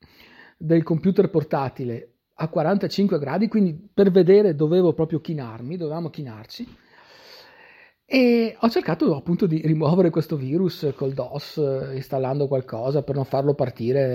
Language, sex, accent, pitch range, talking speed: Italian, male, native, 125-180 Hz, 125 wpm